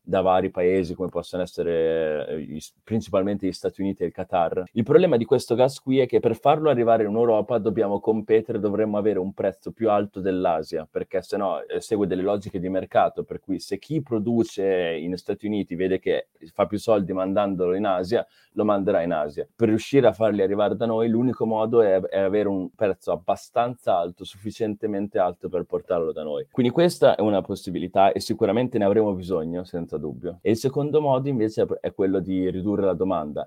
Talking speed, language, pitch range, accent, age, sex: 195 wpm, Italian, 95-115 Hz, native, 30-49, male